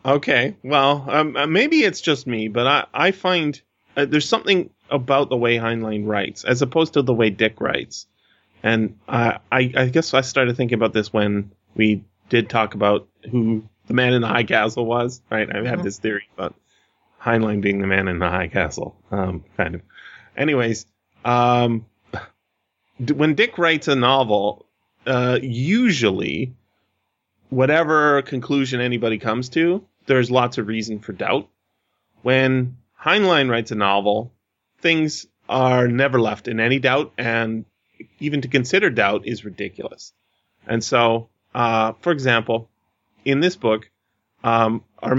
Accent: American